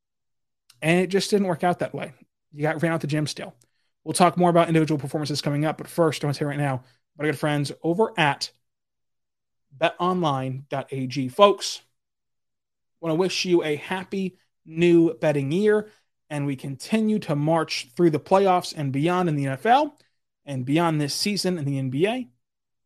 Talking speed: 180 wpm